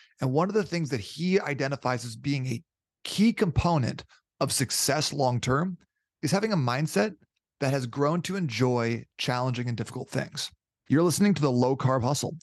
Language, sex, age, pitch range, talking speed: English, male, 30-49, 125-160 Hz, 175 wpm